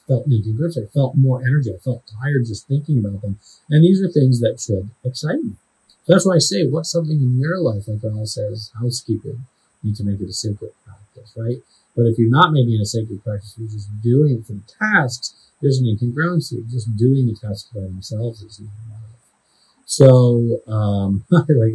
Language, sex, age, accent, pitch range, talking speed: English, male, 30-49, American, 105-135 Hz, 200 wpm